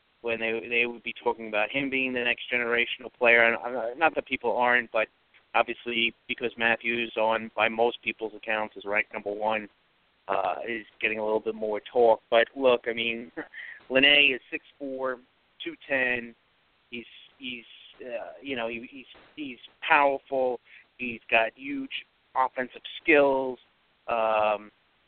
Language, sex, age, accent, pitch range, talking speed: English, male, 30-49, American, 115-130 Hz, 155 wpm